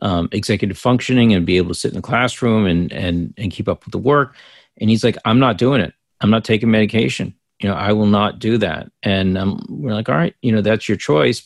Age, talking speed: 40-59, 250 wpm